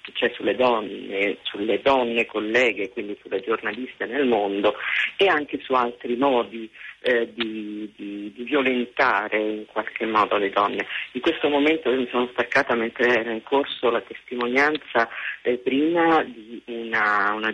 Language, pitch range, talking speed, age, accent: Italian, 110-130 Hz, 145 wpm, 40-59, native